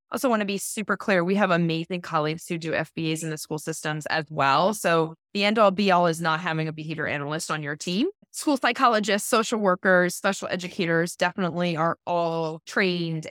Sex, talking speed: female, 195 wpm